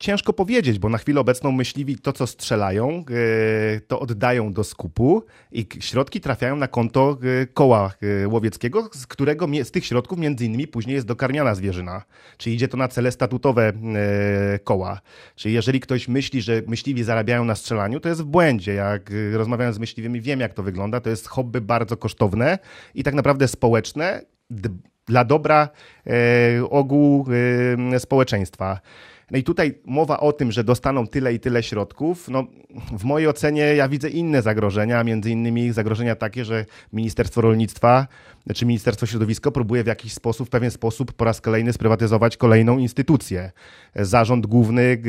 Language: Polish